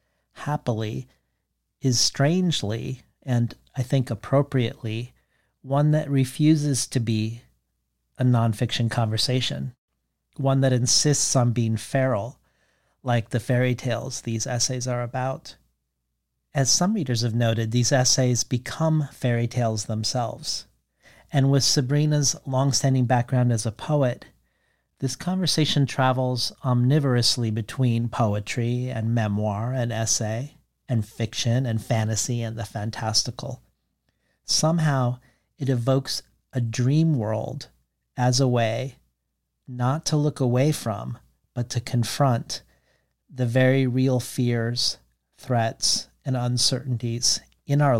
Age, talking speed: 40-59, 115 wpm